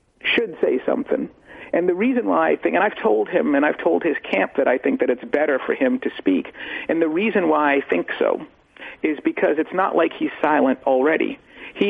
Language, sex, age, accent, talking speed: English, male, 50-69, American, 220 wpm